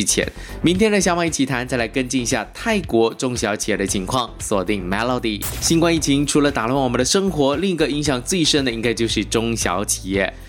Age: 20-39